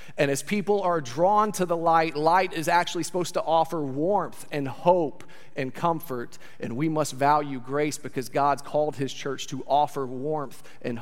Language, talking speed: English, 180 wpm